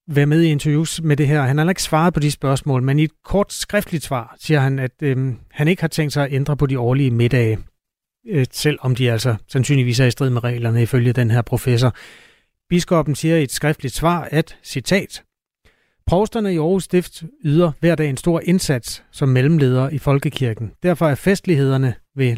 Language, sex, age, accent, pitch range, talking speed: Danish, male, 30-49, native, 125-155 Hz, 200 wpm